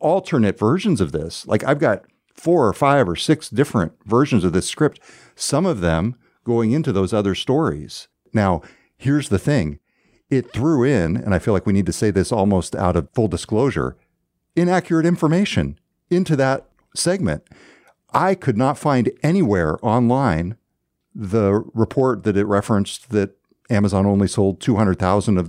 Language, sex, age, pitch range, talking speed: English, male, 50-69, 100-135 Hz, 160 wpm